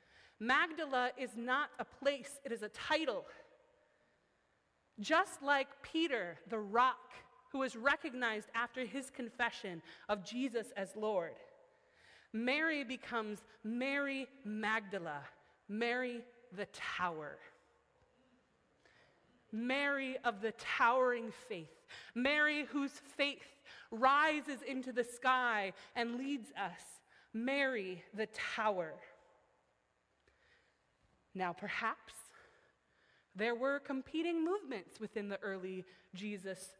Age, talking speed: 30-49, 95 wpm